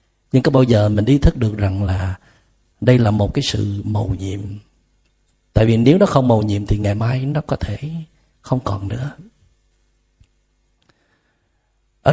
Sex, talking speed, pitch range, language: male, 170 wpm, 105-125 Hz, Vietnamese